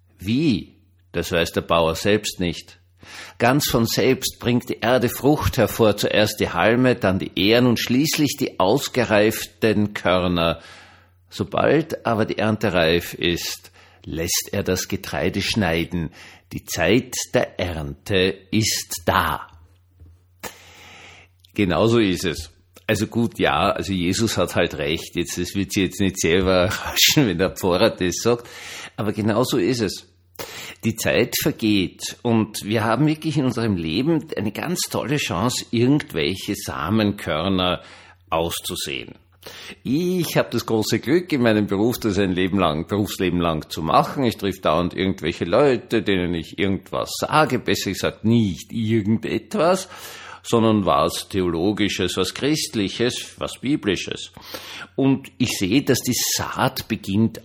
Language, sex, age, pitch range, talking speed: German, male, 50-69, 90-115 Hz, 135 wpm